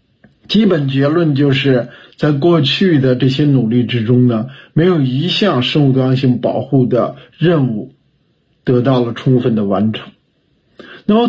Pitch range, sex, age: 135-210 Hz, male, 50-69